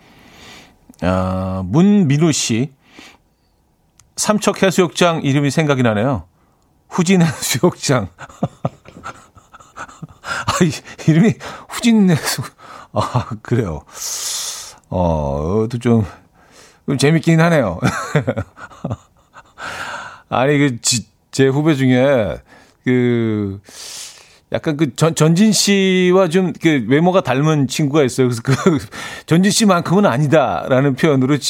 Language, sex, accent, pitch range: Korean, male, native, 105-165 Hz